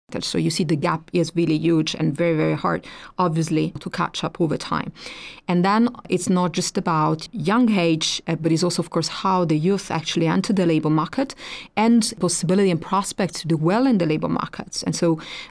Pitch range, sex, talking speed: 165-190 Hz, female, 205 wpm